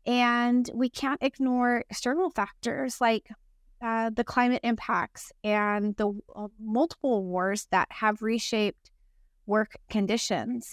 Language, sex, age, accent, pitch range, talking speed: English, female, 30-49, American, 210-240 Hz, 115 wpm